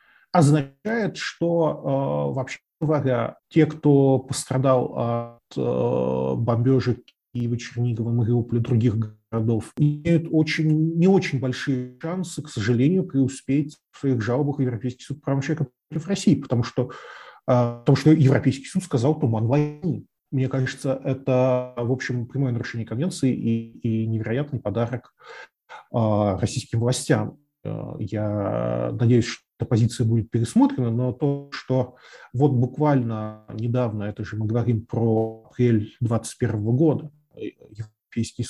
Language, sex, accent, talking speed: Russian, male, native, 125 wpm